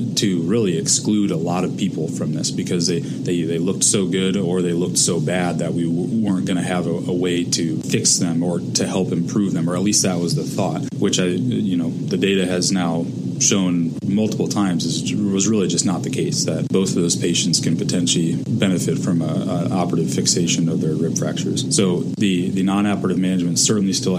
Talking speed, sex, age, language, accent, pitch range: 225 wpm, male, 30-49, English, American, 90-100 Hz